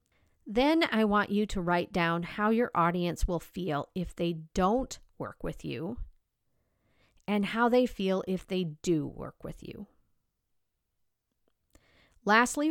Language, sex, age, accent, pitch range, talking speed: English, female, 40-59, American, 165-205 Hz, 135 wpm